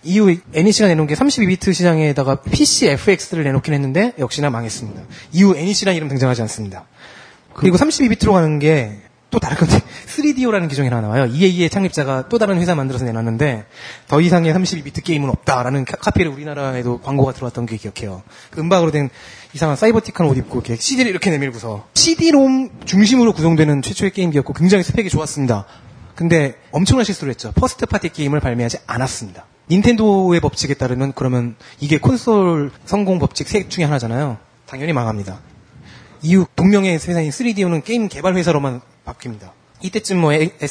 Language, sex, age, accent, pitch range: Korean, male, 20-39, native, 130-195 Hz